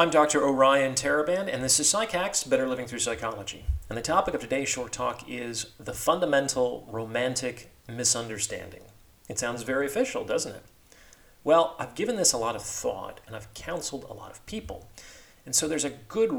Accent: American